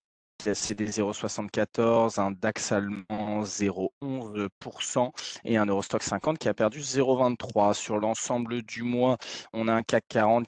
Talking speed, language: 130 wpm, French